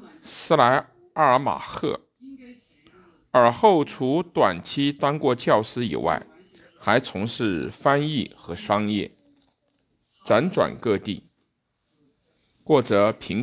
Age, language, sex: 50-69, Chinese, male